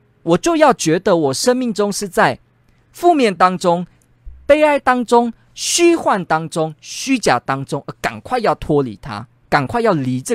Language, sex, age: Chinese, male, 20-39